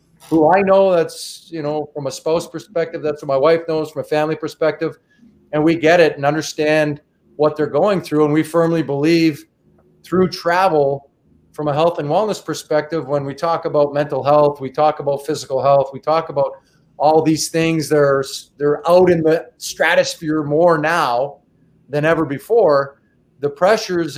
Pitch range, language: 150-170 Hz, English